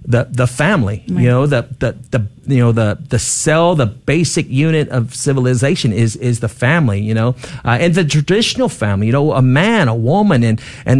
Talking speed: 200 wpm